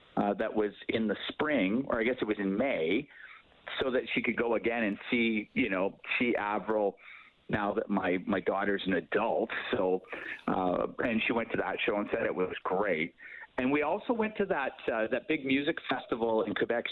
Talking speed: 205 wpm